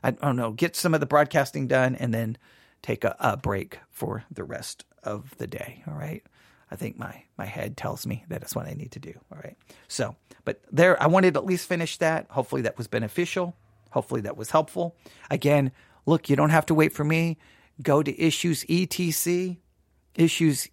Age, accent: 40-59, American